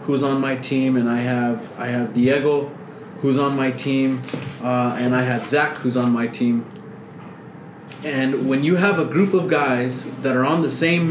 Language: English